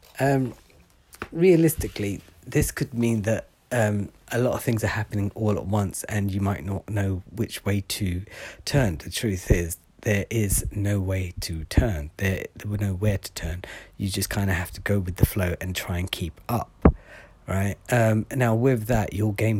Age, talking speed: 40-59, 195 wpm